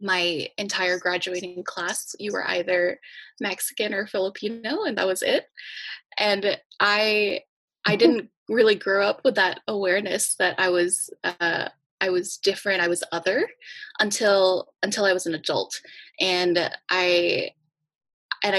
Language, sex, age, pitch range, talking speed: English, female, 20-39, 170-205 Hz, 140 wpm